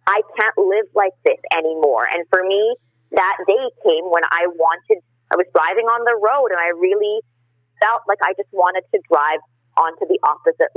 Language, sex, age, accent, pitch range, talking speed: English, female, 30-49, American, 155-210 Hz, 190 wpm